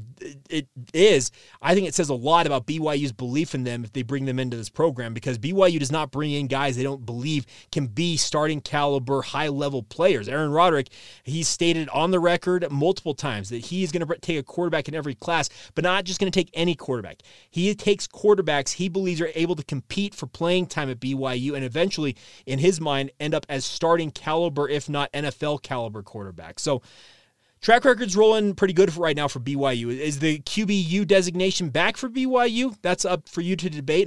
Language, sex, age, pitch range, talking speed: English, male, 30-49, 140-175 Hz, 205 wpm